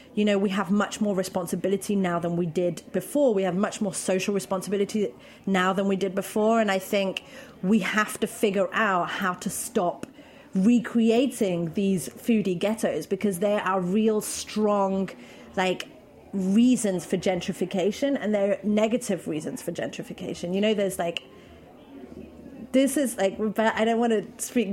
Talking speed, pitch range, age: 160 wpm, 190-230 Hz, 30-49